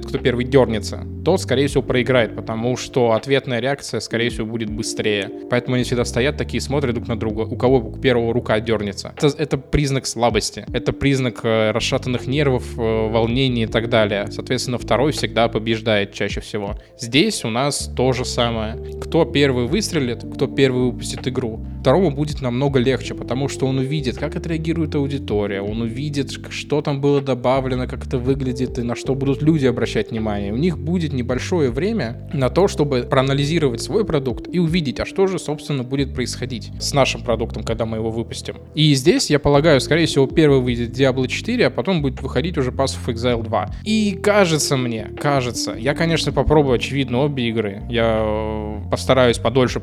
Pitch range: 115-140 Hz